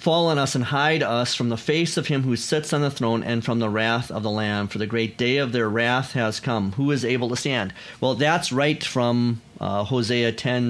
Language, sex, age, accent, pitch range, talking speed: English, male, 40-59, American, 115-145 Hz, 245 wpm